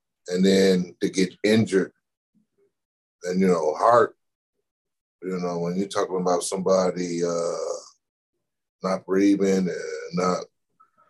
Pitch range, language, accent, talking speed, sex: 95-125 Hz, English, American, 115 wpm, male